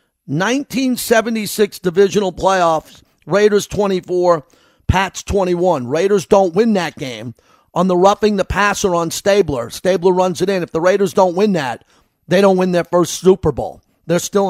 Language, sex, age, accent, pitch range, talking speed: English, male, 50-69, American, 175-215 Hz, 155 wpm